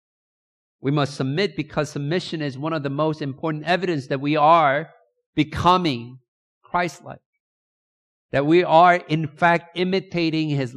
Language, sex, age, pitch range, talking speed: English, male, 50-69, 115-155 Hz, 135 wpm